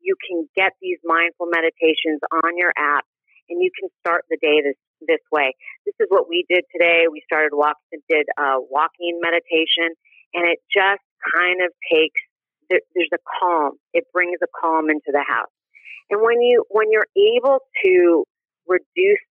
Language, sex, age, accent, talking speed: English, female, 40-59, American, 170 wpm